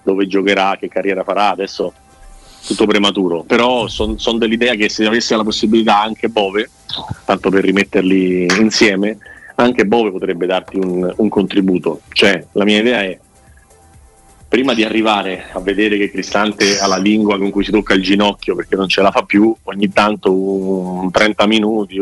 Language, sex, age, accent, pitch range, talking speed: Italian, male, 30-49, native, 95-110 Hz, 170 wpm